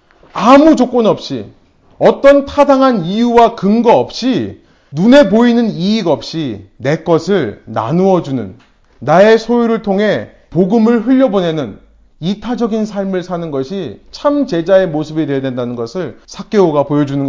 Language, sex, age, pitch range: Korean, male, 30-49, 165-235 Hz